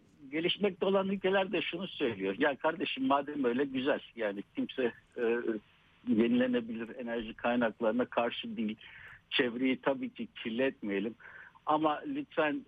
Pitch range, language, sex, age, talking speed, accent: 135-185 Hz, Turkish, male, 60-79, 125 wpm, native